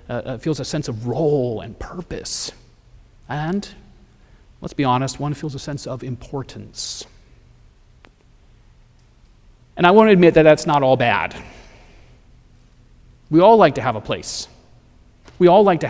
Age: 30-49